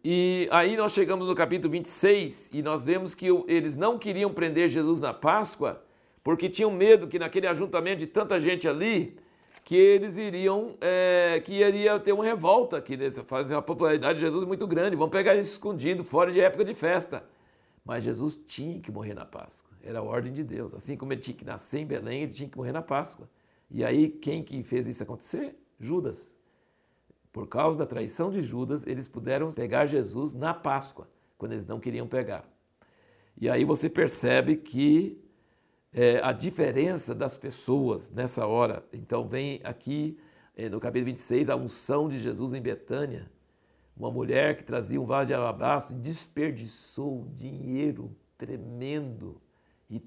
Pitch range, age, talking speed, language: 130-180 Hz, 60-79, 170 wpm, Portuguese